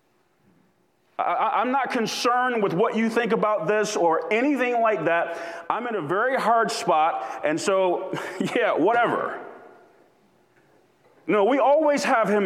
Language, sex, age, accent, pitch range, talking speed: English, male, 40-59, American, 165-255 Hz, 135 wpm